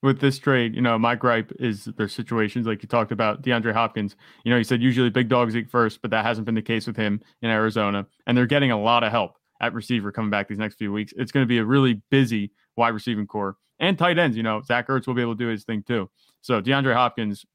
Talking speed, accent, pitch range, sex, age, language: 265 wpm, American, 115-140 Hz, male, 30-49, English